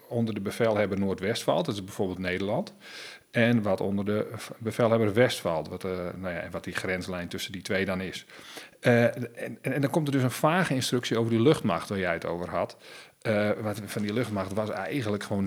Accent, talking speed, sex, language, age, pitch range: Dutch, 205 wpm, male, Dutch, 40-59, 95-125 Hz